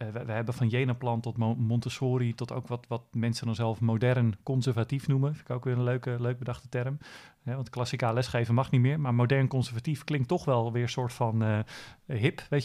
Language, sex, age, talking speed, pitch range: Dutch, male, 40-59, 215 wpm, 115-135 Hz